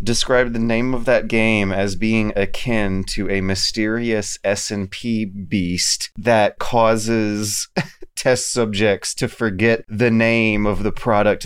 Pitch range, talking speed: 90-110 Hz, 130 wpm